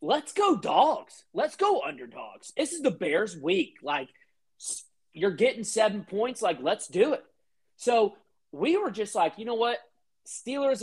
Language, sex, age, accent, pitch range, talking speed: English, male, 30-49, American, 160-230 Hz, 160 wpm